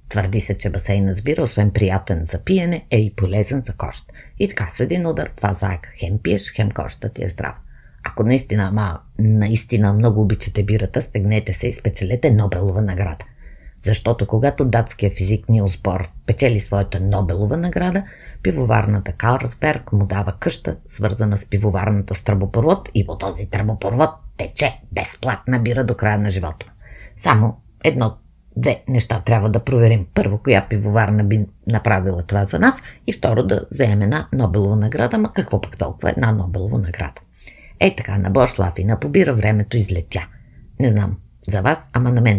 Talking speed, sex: 165 wpm, female